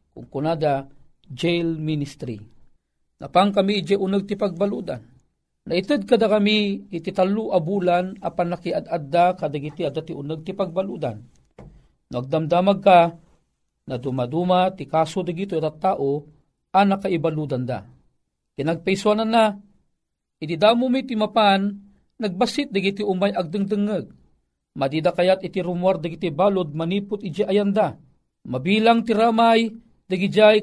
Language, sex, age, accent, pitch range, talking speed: Filipino, male, 40-59, native, 160-220 Hz, 110 wpm